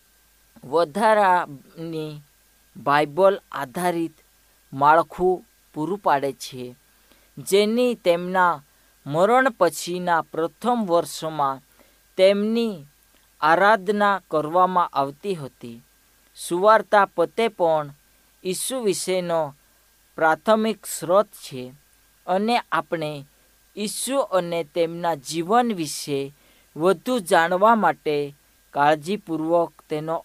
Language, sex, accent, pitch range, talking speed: Hindi, female, native, 145-200 Hz, 65 wpm